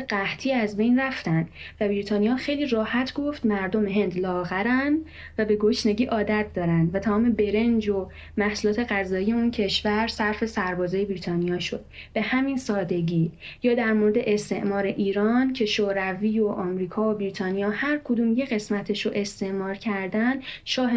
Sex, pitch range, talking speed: female, 195-230 Hz, 145 wpm